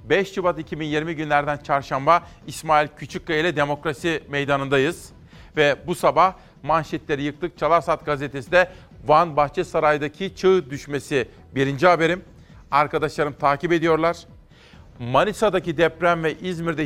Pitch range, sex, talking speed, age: 145-170 Hz, male, 115 wpm, 40-59